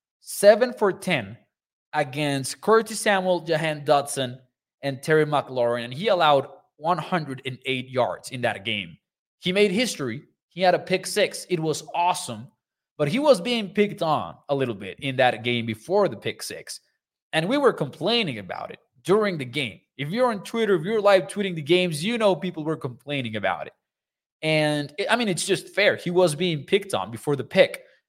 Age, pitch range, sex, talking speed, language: 20-39, 135-185 Hz, male, 180 wpm, English